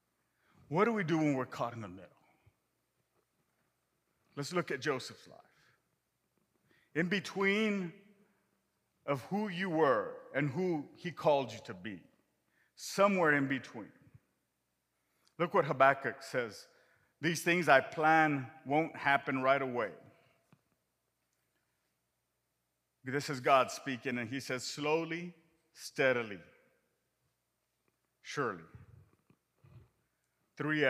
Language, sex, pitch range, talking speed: English, male, 120-160 Hz, 105 wpm